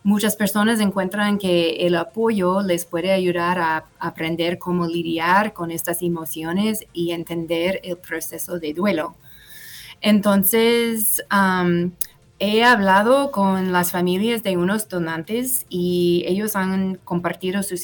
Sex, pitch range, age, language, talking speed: female, 170-200 Hz, 20-39, English, 125 wpm